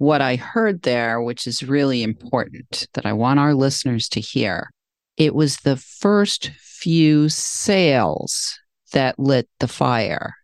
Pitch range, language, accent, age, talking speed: 135-175 Hz, English, American, 40-59, 145 wpm